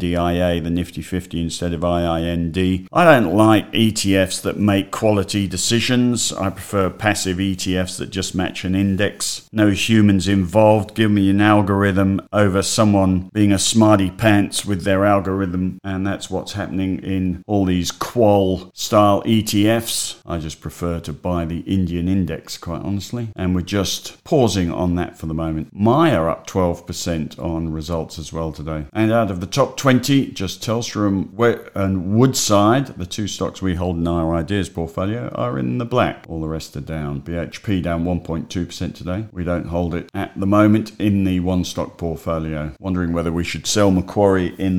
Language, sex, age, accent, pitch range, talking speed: English, male, 40-59, British, 90-105 Hz, 175 wpm